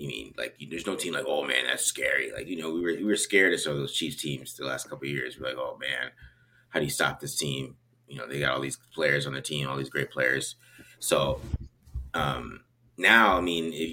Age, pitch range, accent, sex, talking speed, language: 30-49, 75-120 Hz, American, male, 265 wpm, English